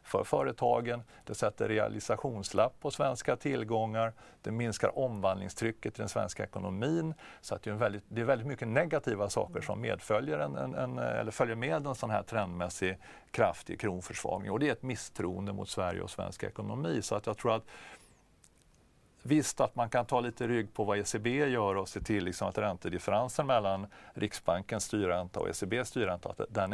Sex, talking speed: male, 180 wpm